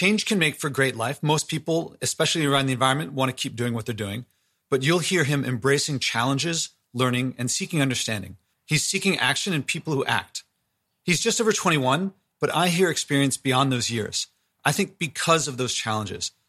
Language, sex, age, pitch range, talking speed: English, male, 30-49, 125-165 Hz, 195 wpm